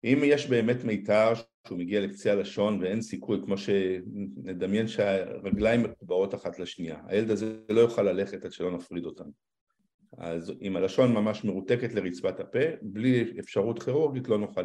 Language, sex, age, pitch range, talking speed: Hebrew, male, 50-69, 95-120 Hz, 150 wpm